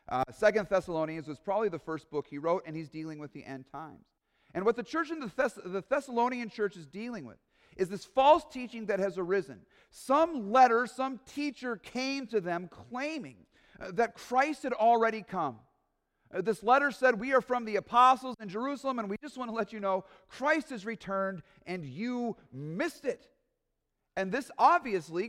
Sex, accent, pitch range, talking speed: male, American, 180-245 Hz, 185 wpm